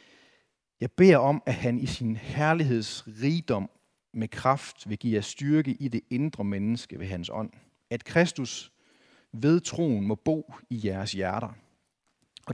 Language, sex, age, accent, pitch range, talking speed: Danish, male, 40-59, native, 110-150 Hz, 150 wpm